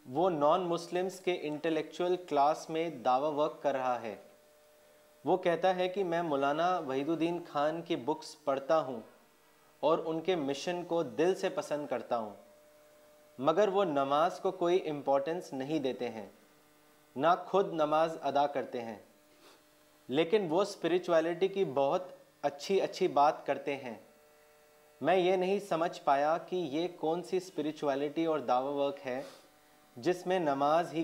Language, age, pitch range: Urdu, 30-49, 145-180 Hz